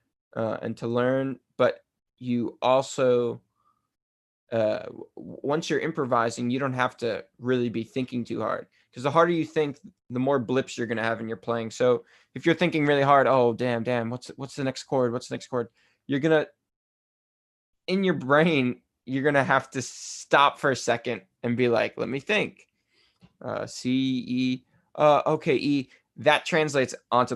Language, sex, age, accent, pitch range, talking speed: English, male, 20-39, American, 115-135 Hz, 175 wpm